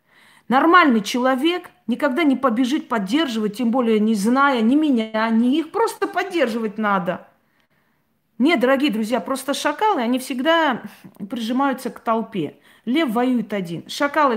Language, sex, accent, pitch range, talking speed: Russian, female, native, 220-285 Hz, 130 wpm